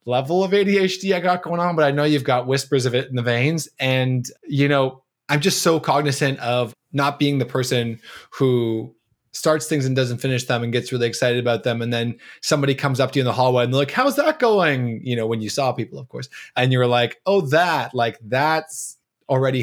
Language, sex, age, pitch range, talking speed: English, male, 20-39, 125-155 Hz, 230 wpm